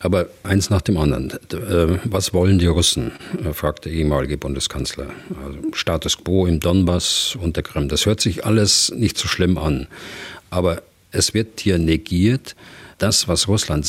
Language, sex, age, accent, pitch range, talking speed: German, male, 50-69, German, 75-95 Hz, 160 wpm